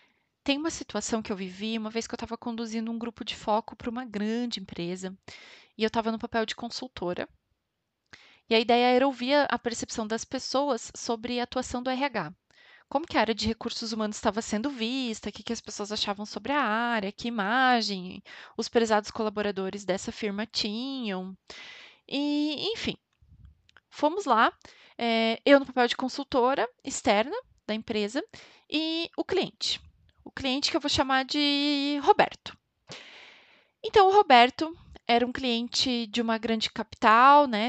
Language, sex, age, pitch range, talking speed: Portuguese, female, 20-39, 215-270 Hz, 160 wpm